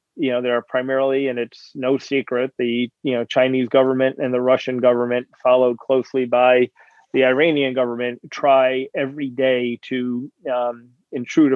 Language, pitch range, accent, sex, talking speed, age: English, 120-135 Hz, American, male, 155 wpm, 40-59